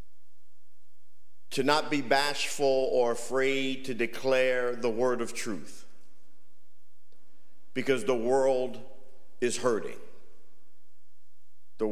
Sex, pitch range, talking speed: male, 100-130 Hz, 90 wpm